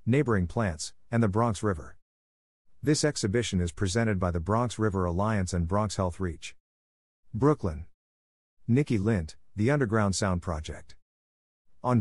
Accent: American